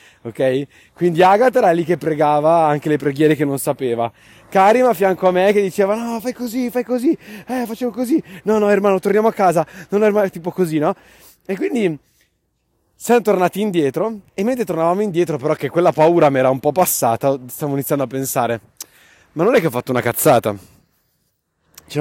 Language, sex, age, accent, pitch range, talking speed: Italian, male, 30-49, native, 130-185 Hz, 195 wpm